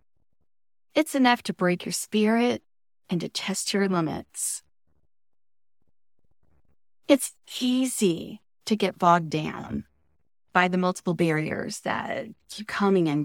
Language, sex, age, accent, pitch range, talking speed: English, female, 30-49, American, 155-215 Hz, 115 wpm